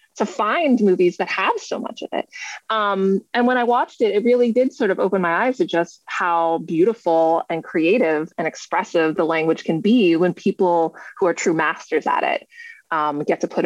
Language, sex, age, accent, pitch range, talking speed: English, female, 30-49, American, 175-240 Hz, 205 wpm